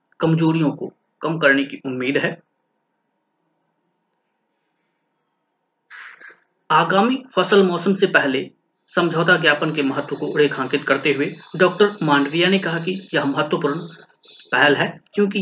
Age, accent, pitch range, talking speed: 30-49, native, 140-180 Hz, 115 wpm